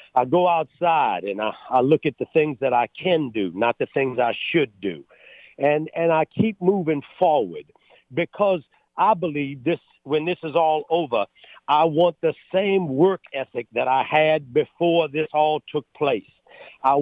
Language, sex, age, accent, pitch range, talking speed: English, male, 50-69, American, 145-185 Hz, 175 wpm